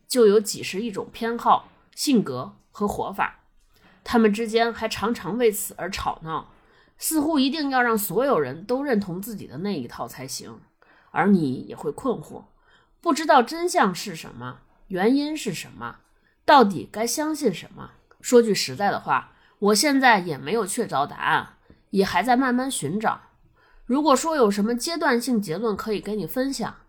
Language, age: Chinese, 20-39